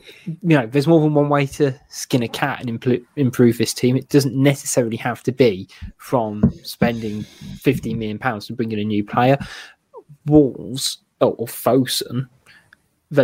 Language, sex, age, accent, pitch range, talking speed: English, male, 20-39, British, 115-145 Hz, 170 wpm